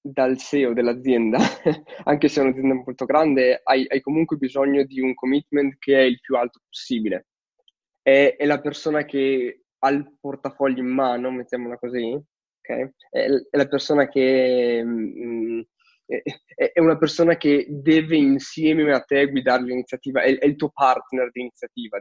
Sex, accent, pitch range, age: male, native, 130-160 Hz, 20-39